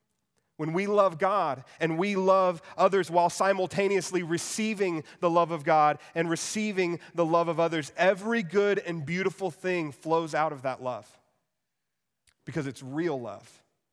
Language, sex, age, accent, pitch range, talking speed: English, male, 30-49, American, 130-170 Hz, 150 wpm